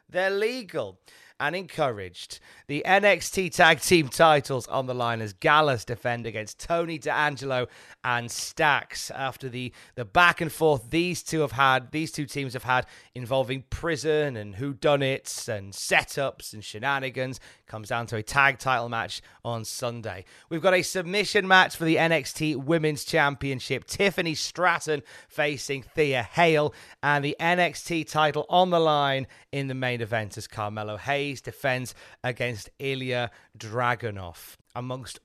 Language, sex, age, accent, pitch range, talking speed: English, male, 30-49, British, 125-165 Hz, 150 wpm